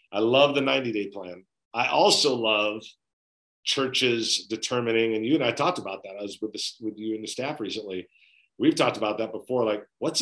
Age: 40-59